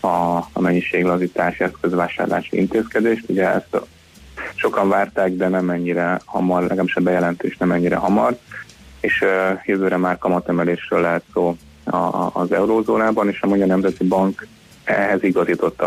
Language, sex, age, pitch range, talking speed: Hungarian, male, 20-39, 85-95 Hz, 135 wpm